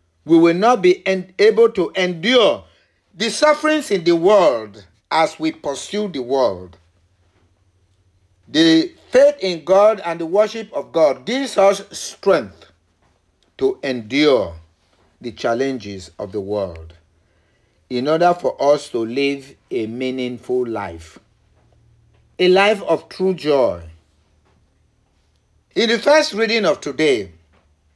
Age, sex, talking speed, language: 50-69, male, 120 wpm, English